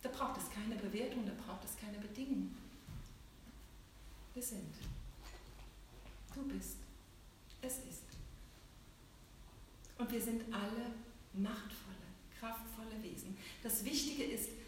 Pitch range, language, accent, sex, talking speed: 200-255 Hz, German, German, female, 90 wpm